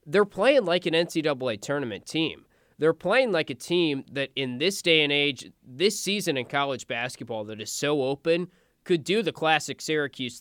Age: 20-39